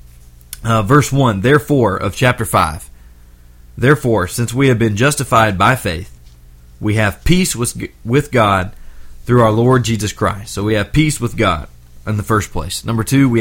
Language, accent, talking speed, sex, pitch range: English, American, 175 wpm, male, 90-120 Hz